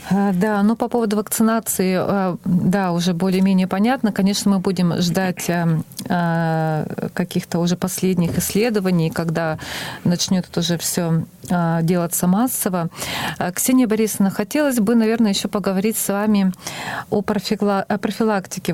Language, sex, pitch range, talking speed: Russian, female, 180-210 Hz, 110 wpm